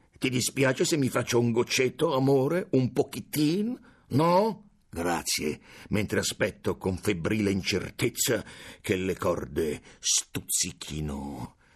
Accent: native